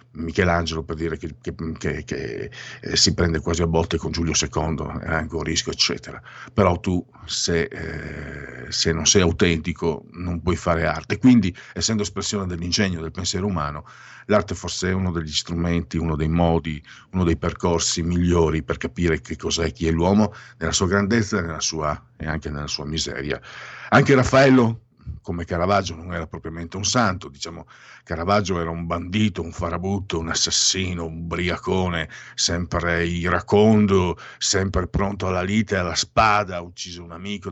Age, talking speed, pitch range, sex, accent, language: 50-69, 165 wpm, 85-100 Hz, male, native, Italian